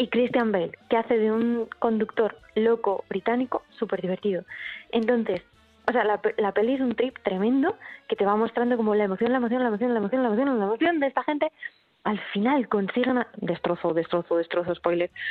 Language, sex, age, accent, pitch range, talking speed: Spanish, female, 20-39, Spanish, 210-305 Hz, 195 wpm